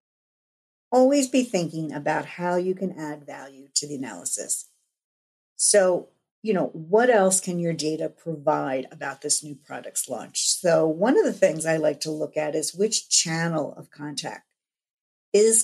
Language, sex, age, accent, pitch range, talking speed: English, female, 50-69, American, 155-210 Hz, 160 wpm